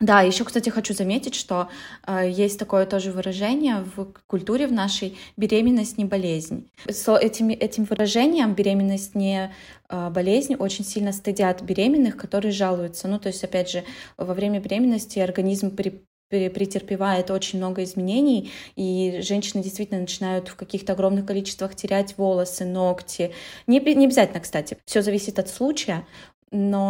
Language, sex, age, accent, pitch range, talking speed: Russian, female, 20-39, native, 185-225 Hz, 140 wpm